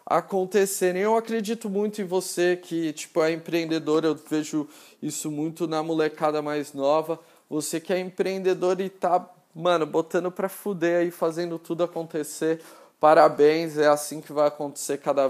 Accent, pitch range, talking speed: Brazilian, 150-180 Hz, 150 wpm